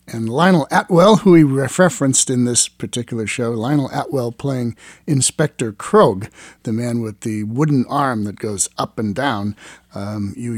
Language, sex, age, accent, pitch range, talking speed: English, male, 50-69, American, 105-150 Hz, 160 wpm